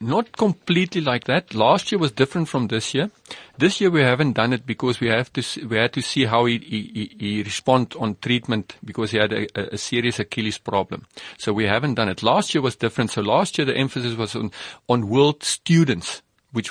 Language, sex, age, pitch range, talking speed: English, male, 50-69, 115-145 Hz, 210 wpm